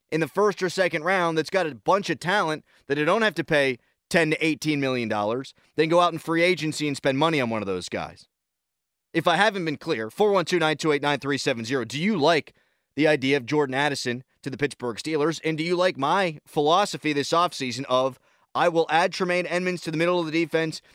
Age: 30-49